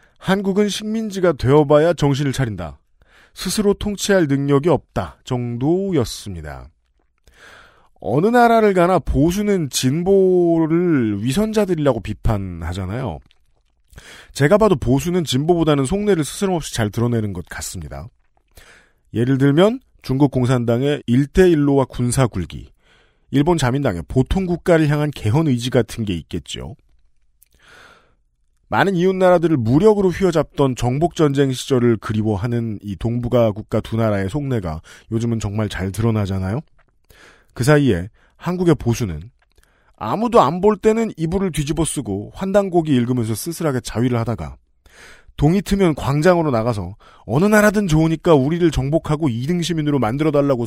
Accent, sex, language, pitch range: native, male, Korean, 110-170 Hz